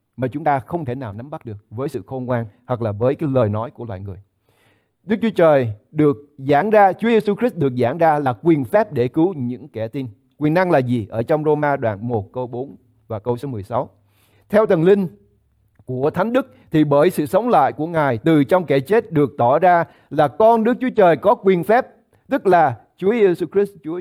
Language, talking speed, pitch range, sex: English, 225 wpm, 125-200 Hz, male